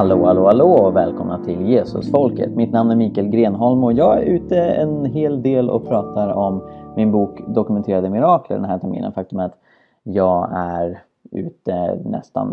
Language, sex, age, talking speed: Swedish, male, 20-39, 170 wpm